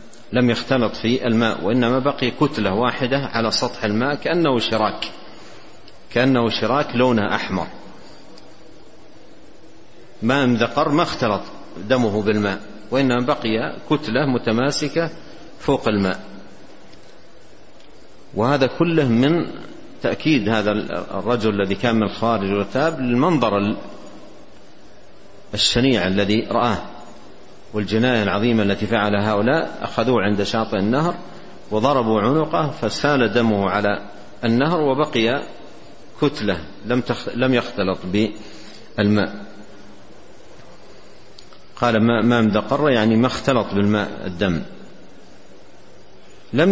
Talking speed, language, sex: 100 wpm, Arabic, male